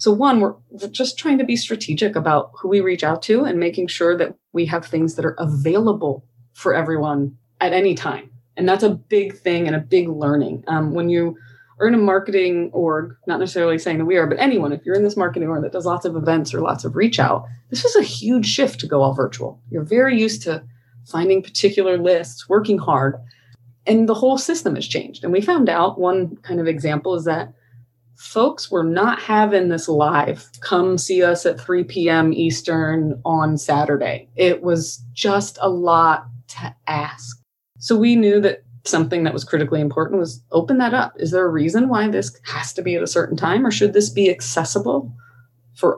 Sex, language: female, English